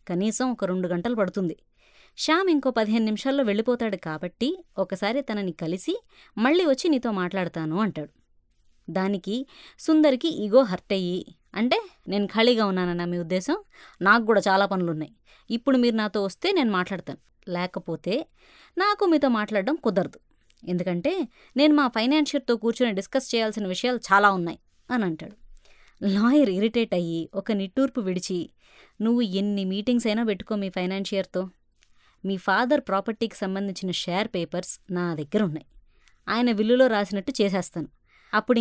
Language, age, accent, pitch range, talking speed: Telugu, 20-39, native, 190-250 Hz, 130 wpm